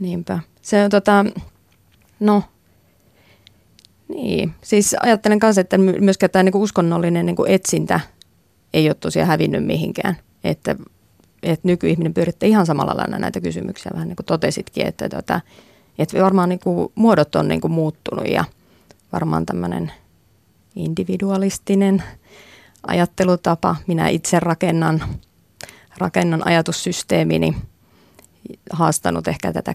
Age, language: 30-49, Finnish